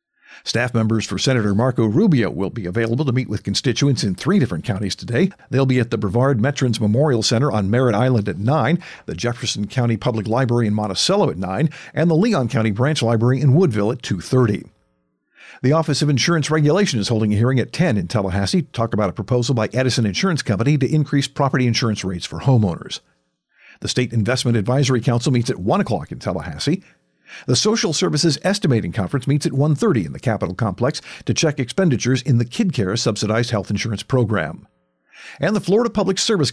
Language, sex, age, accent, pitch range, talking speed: English, male, 50-69, American, 110-160 Hz, 190 wpm